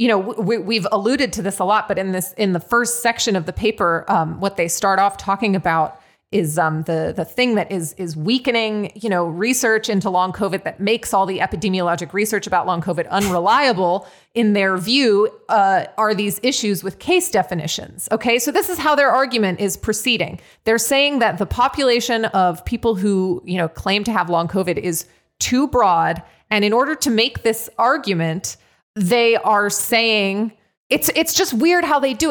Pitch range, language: 185-230 Hz, English